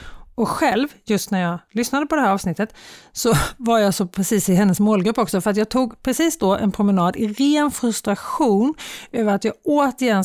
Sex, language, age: female, Swedish, 30-49